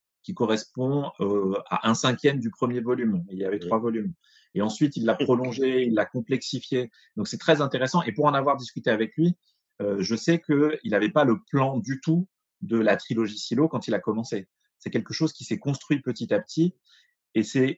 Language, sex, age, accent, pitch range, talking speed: French, male, 30-49, French, 120-155 Hz, 210 wpm